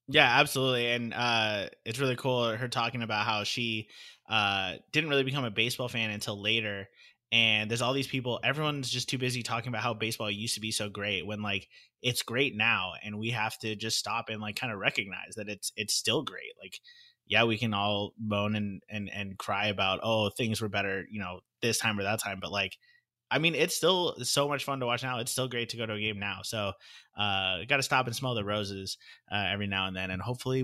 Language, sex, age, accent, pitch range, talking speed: English, male, 20-39, American, 105-125 Hz, 235 wpm